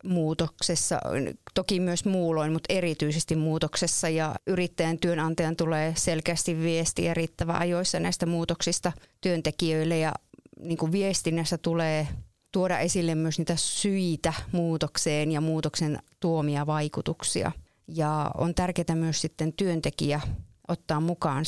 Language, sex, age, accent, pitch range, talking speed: Finnish, female, 30-49, native, 155-175 Hz, 110 wpm